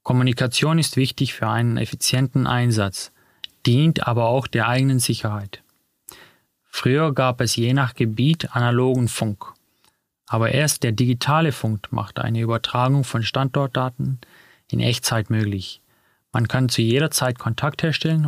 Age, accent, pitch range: 30-49, German, 115-135 Hz